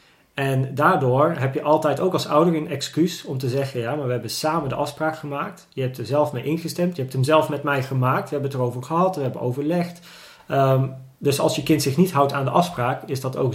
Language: Dutch